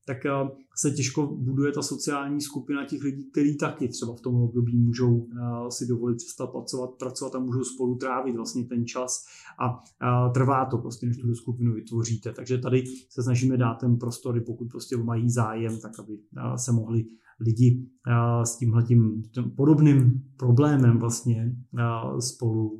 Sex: male